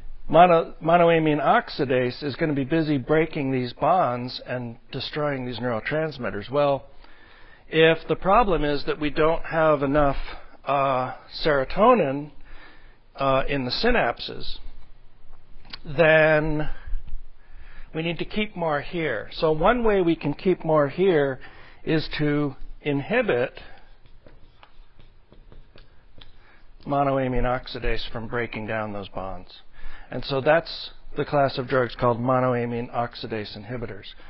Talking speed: 115 wpm